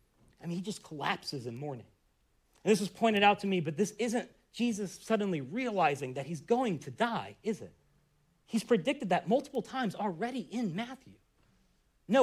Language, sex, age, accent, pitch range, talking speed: English, male, 40-59, American, 150-225 Hz, 175 wpm